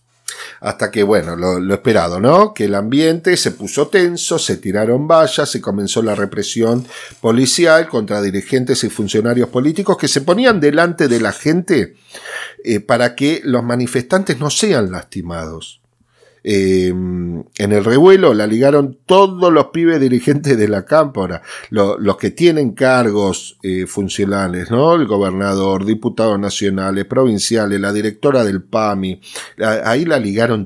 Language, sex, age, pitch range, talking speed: Spanish, male, 40-59, 100-145 Hz, 145 wpm